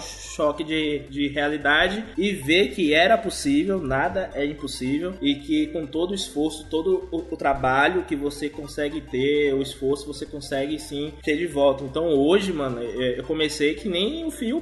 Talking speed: 175 wpm